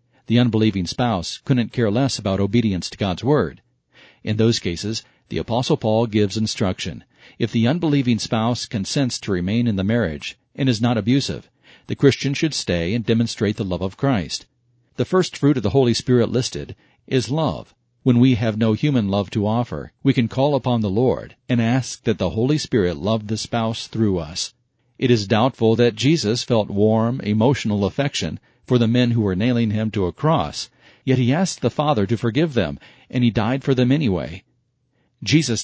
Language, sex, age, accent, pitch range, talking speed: English, male, 50-69, American, 110-130 Hz, 190 wpm